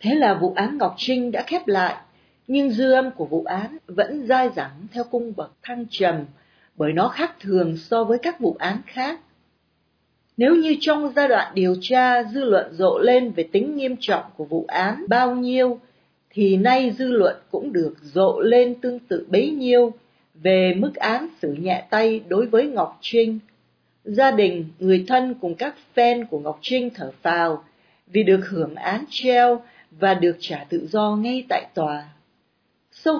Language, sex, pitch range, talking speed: Vietnamese, female, 180-255 Hz, 185 wpm